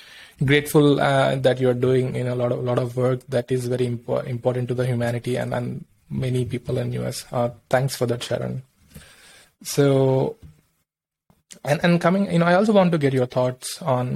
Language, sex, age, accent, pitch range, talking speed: English, male, 20-39, Indian, 125-140 Hz, 210 wpm